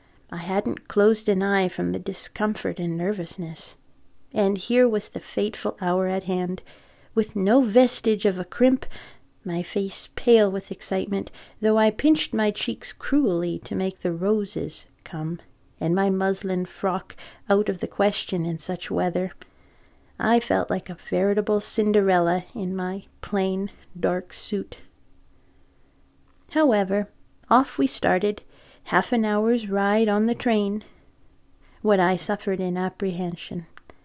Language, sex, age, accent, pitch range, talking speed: English, female, 40-59, American, 185-220 Hz, 135 wpm